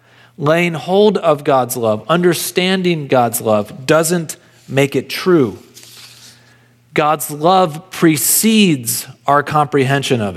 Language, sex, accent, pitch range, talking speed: English, male, American, 125-165 Hz, 105 wpm